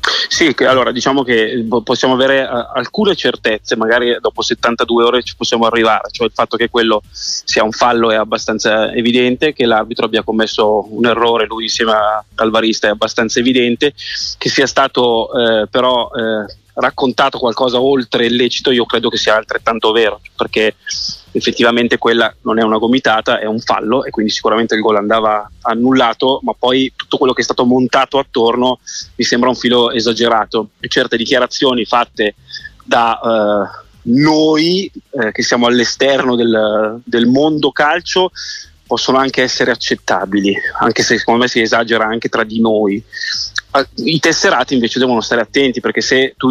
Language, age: Italian, 20-39